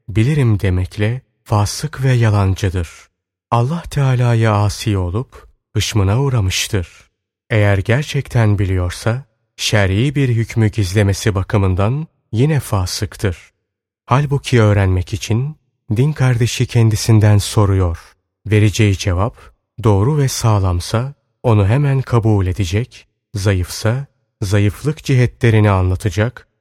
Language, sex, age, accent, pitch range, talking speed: Turkish, male, 30-49, native, 100-125 Hz, 90 wpm